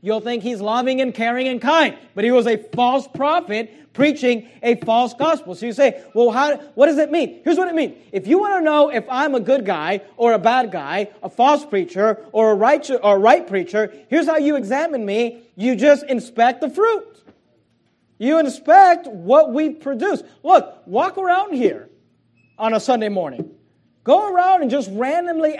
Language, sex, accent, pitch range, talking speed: English, male, American, 200-275 Hz, 195 wpm